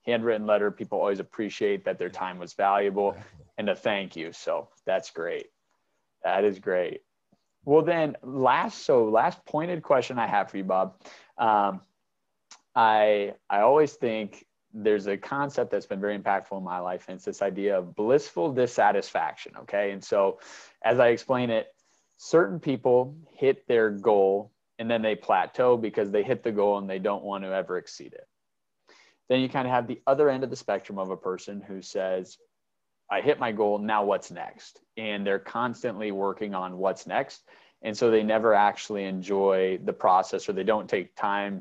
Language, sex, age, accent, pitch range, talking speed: English, male, 30-49, American, 95-120 Hz, 180 wpm